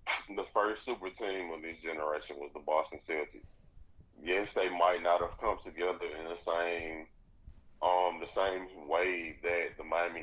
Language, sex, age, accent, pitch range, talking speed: English, male, 20-39, American, 80-95 Hz, 165 wpm